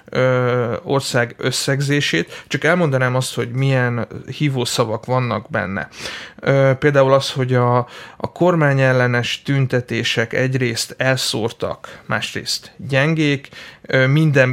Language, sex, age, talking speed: Hungarian, male, 30-49, 95 wpm